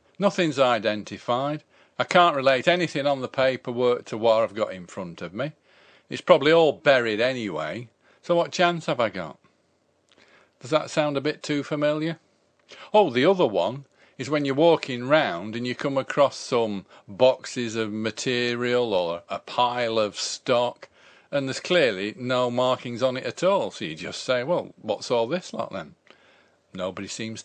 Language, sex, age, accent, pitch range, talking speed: English, male, 40-59, British, 105-145 Hz, 170 wpm